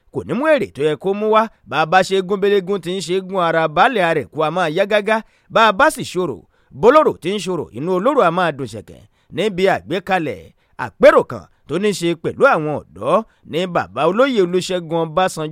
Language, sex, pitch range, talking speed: English, male, 170-230 Hz, 165 wpm